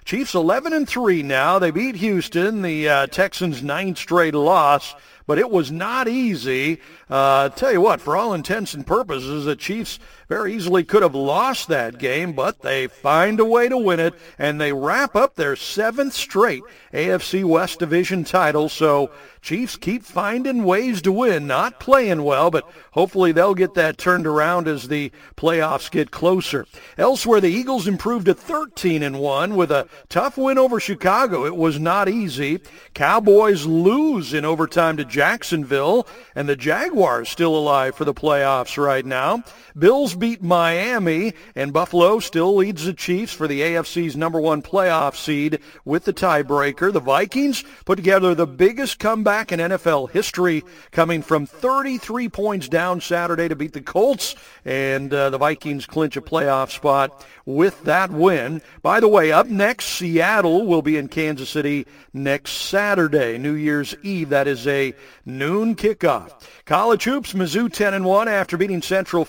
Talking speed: 160 wpm